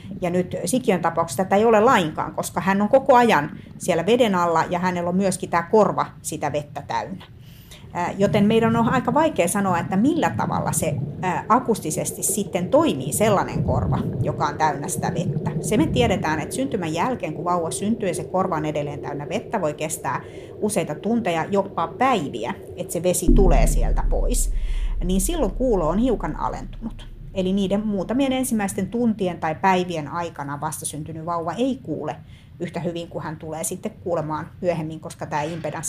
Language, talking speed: Finnish, 170 wpm